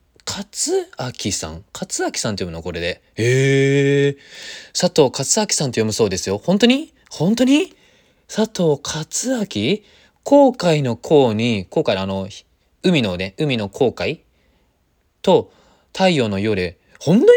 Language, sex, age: Japanese, male, 20-39